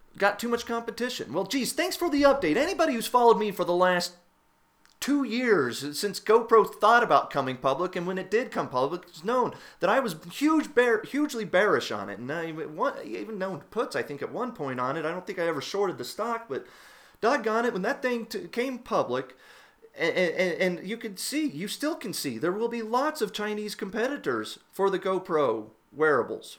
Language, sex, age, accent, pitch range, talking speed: English, male, 30-49, American, 150-230 Hz, 210 wpm